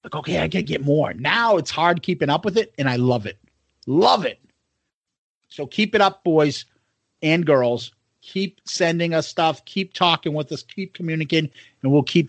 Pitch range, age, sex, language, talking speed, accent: 150-210 Hz, 40-59, male, English, 190 wpm, American